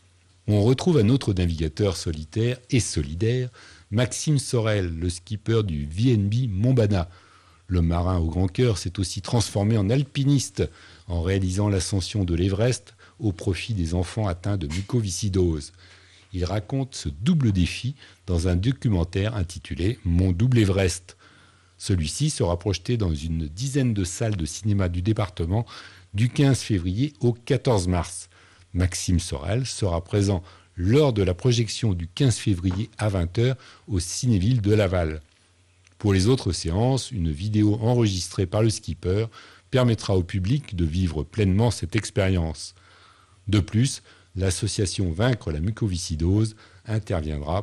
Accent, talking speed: French, 135 wpm